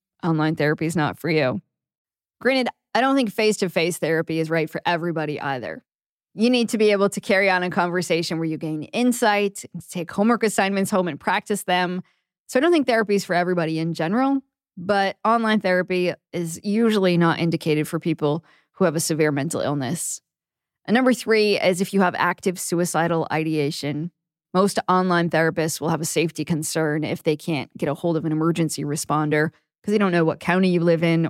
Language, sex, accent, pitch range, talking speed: English, female, American, 160-190 Hz, 190 wpm